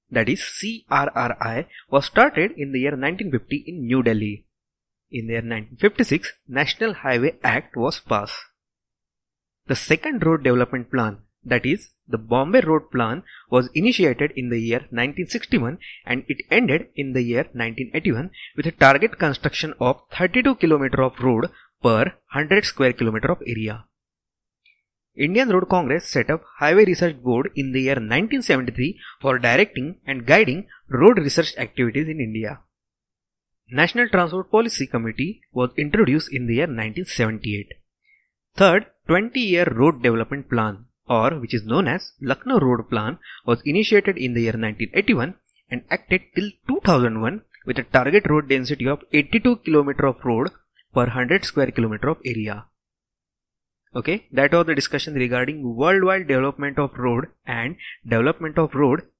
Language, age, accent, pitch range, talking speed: English, 30-49, Indian, 120-165 Hz, 145 wpm